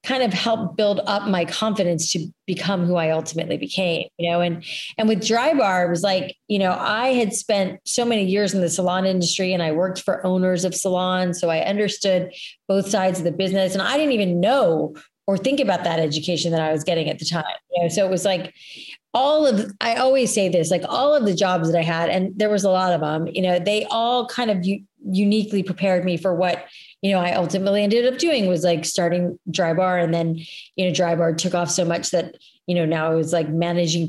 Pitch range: 170-200 Hz